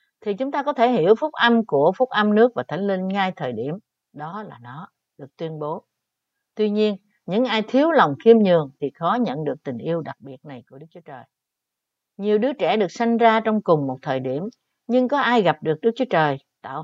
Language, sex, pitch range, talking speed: Vietnamese, female, 160-230 Hz, 230 wpm